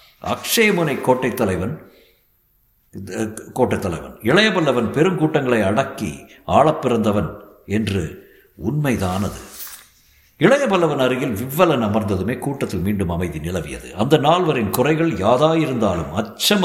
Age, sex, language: 60-79, male, Tamil